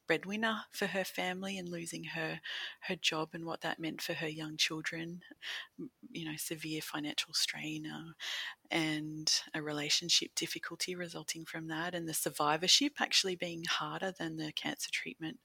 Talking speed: 150 wpm